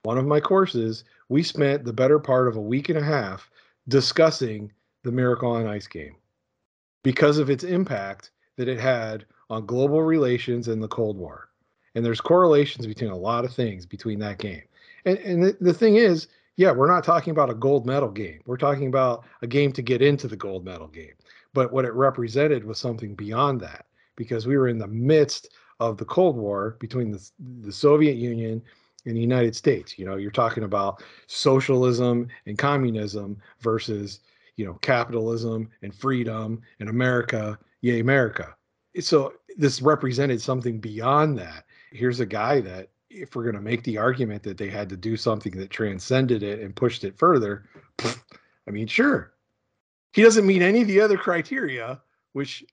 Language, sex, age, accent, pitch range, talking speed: English, male, 40-59, American, 110-140 Hz, 185 wpm